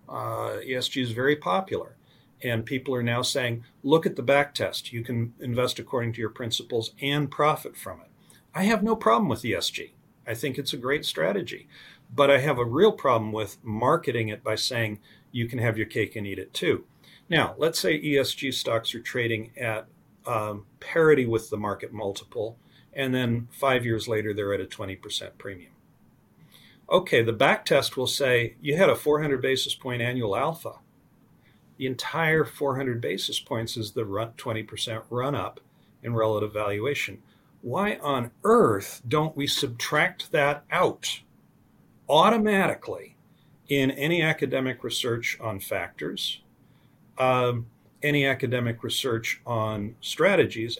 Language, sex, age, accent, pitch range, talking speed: English, male, 40-59, American, 115-140 Hz, 155 wpm